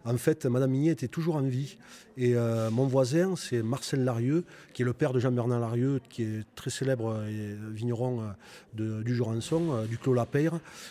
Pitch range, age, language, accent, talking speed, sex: 115-135 Hz, 30-49, French, French, 185 wpm, male